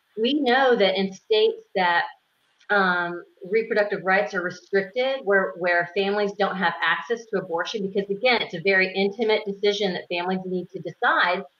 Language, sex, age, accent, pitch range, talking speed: English, female, 30-49, American, 185-220 Hz, 160 wpm